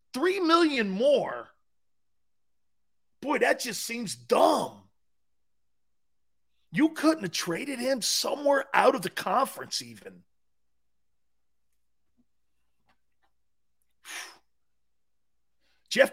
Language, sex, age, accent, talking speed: English, male, 40-59, American, 75 wpm